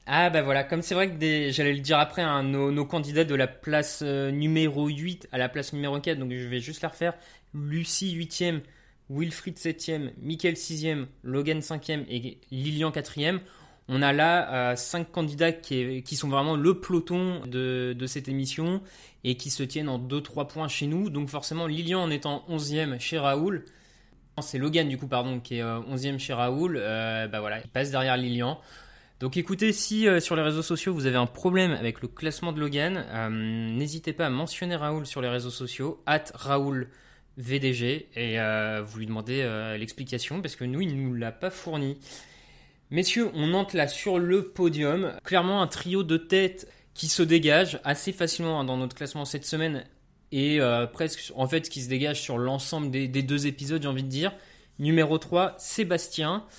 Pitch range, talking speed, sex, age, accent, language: 130-165 Hz, 200 wpm, male, 20-39, French, French